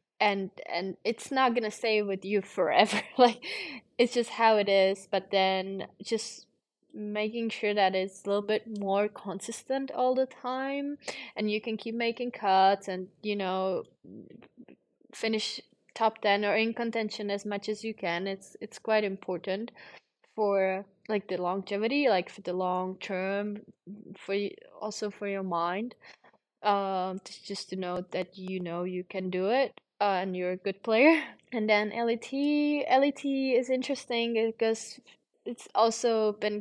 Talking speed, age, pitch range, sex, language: 160 wpm, 20-39, 190-225 Hz, female, English